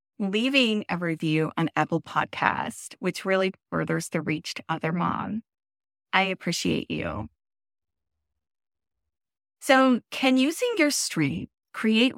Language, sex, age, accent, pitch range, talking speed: English, female, 30-49, American, 170-245 Hz, 115 wpm